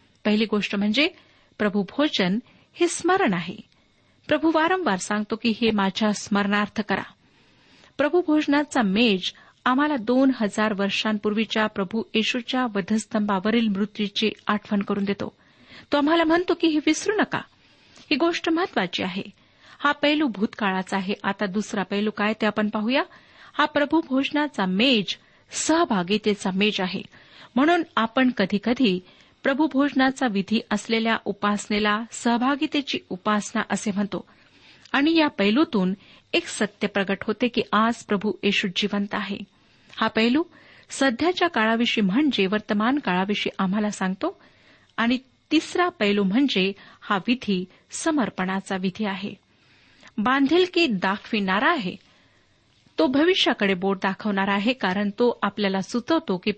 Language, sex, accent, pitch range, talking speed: Marathi, female, native, 200-280 Hz, 120 wpm